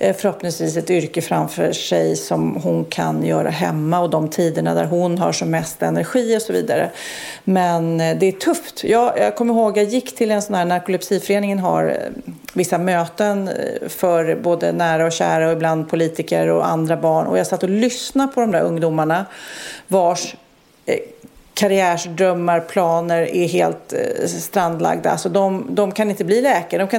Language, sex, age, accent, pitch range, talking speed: Swedish, female, 40-59, native, 170-220 Hz, 170 wpm